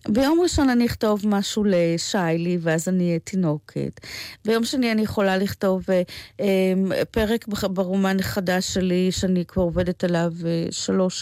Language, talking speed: Hebrew, 145 wpm